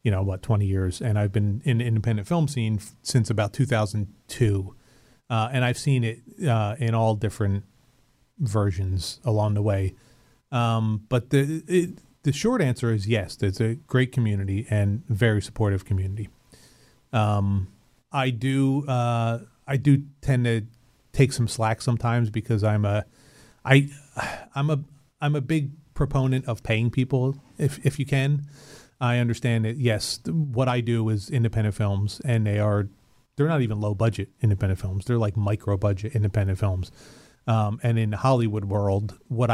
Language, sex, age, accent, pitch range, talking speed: English, male, 30-49, American, 105-130 Hz, 165 wpm